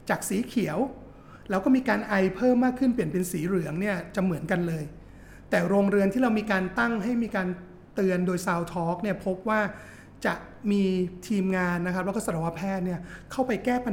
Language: Thai